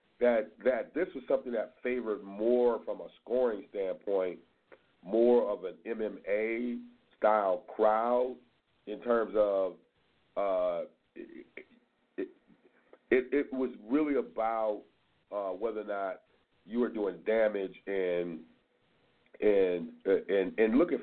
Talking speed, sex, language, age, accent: 115 wpm, male, English, 40-59, American